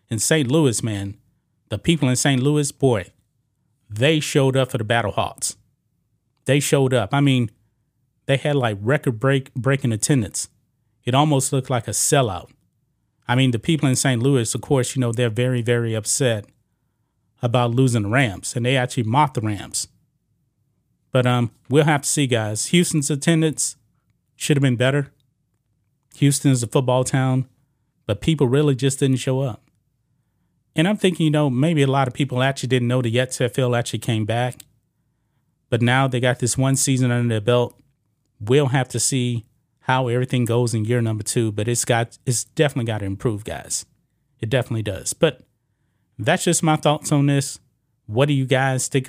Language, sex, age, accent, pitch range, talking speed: English, male, 30-49, American, 120-140 Hz, 180 wpm